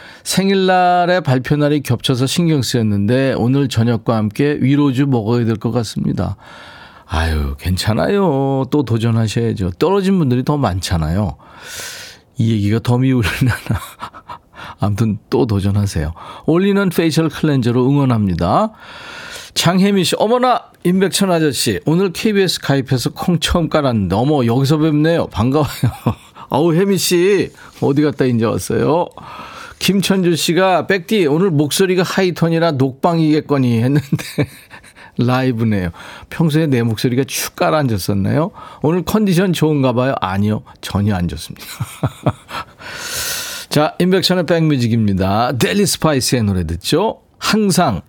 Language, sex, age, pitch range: Korean, male, 40-59, 115-175 Hz